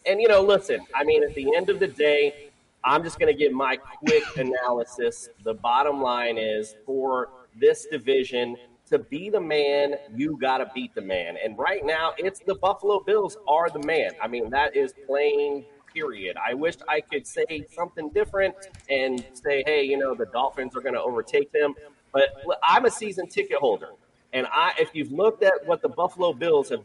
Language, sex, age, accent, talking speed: English, male, 30-49, American, 200 wpm